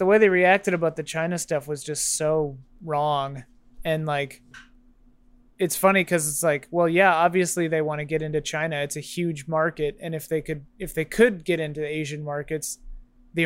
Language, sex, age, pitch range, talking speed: English, male, 20-39, 140-170 Hz, 195 wpm